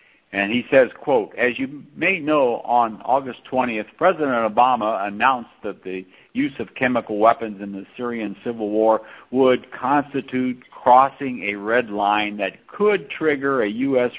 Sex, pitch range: male, 105-145 Hz